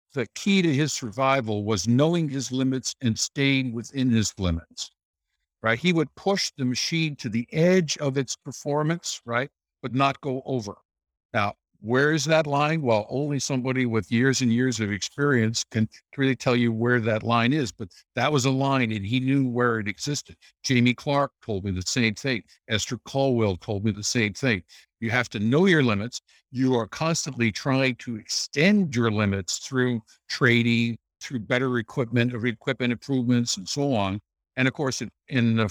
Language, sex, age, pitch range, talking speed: English, male, 60-79, 110-135 Hz, 180 wpm